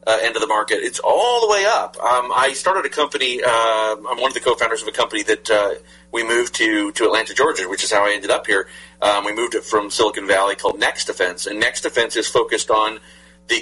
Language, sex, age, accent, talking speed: English, male, 40-59, American, 245 wpm